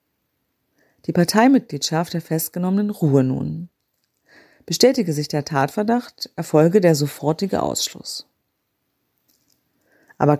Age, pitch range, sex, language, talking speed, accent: 40-59, 150-205 Hz, female, German, 85 wpm, German